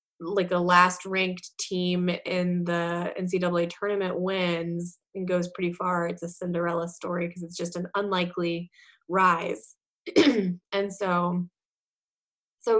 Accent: American